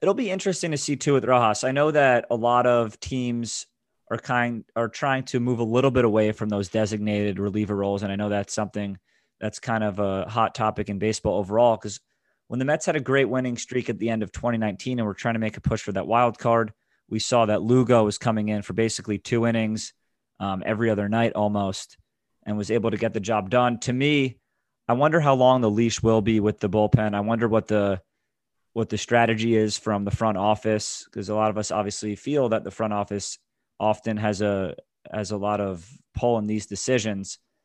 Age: 30-49